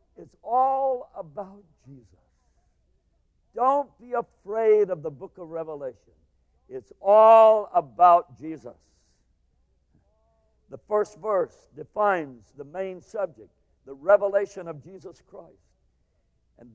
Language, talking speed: English, 105 wpm